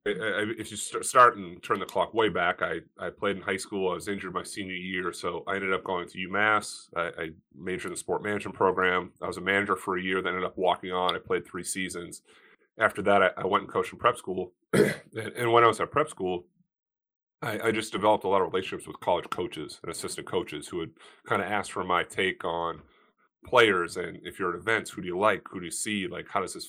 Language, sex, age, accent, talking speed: English, male, 30-49, American, 250 wpm